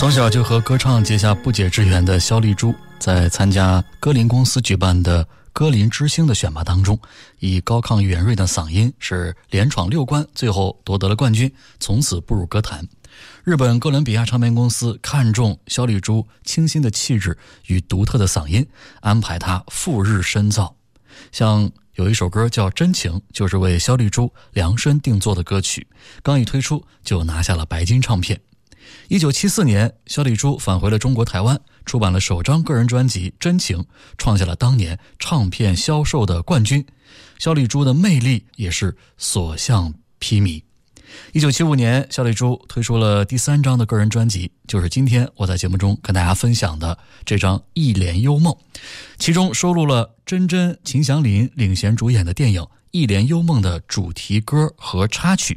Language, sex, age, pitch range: Chinese, male, 20-39, 95-130 Hz